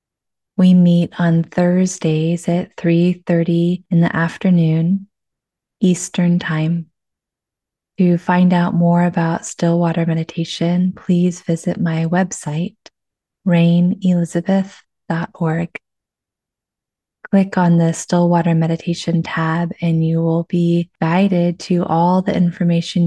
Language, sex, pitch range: English, female, 165-185 Hz